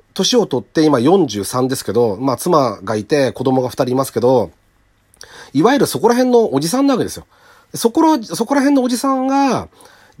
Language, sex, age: Japanese, male, 40-59